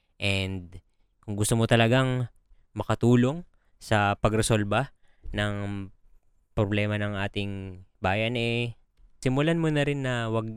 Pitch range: 100-120 Hz